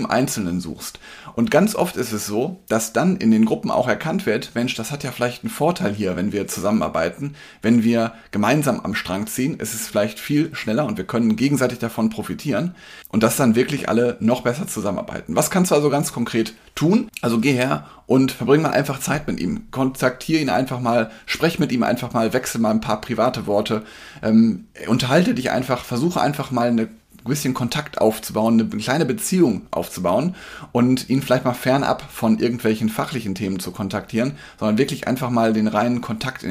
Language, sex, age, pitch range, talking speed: German, male, 30-49, 110-140 Hz, 195 wpm